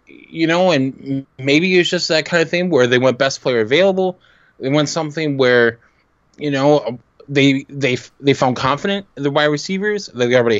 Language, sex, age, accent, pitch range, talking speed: English, male, 20-39, American, 130-165 Hz, 200 wpm